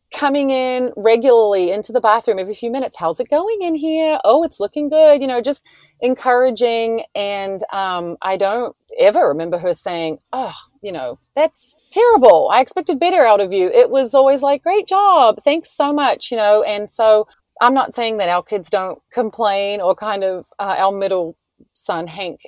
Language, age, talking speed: English, 30-49, 185 wpm